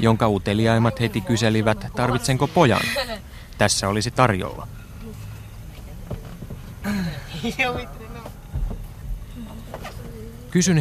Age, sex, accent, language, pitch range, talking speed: 30-49, male, native, Finnish, 110-140 Hz, 55 wpm